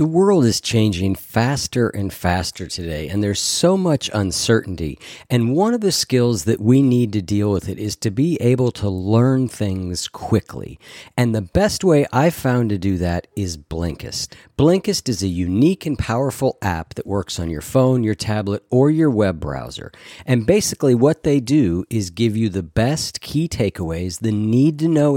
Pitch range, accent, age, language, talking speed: 95-125 Hz, American, 40-59, English, 180 wpm